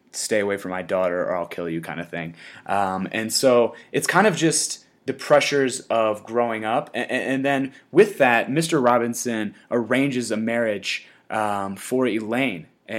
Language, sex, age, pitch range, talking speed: English, male, 20-39, 105-140 Hz, 165 wpm